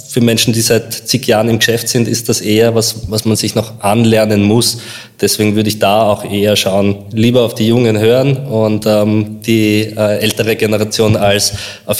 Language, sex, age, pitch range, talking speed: German, male, 20-39, 100-115 Hz, 195 wpm